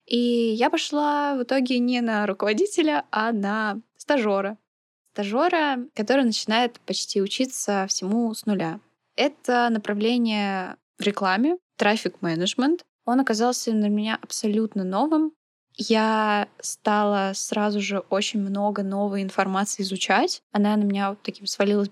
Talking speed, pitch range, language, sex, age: 125 wpm, 200-235 Hz, Russian, female, 20-39